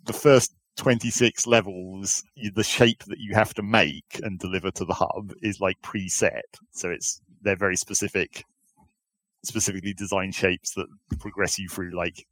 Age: 40-59